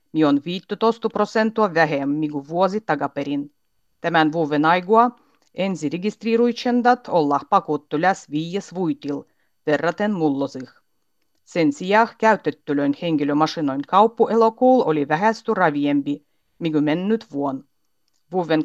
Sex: female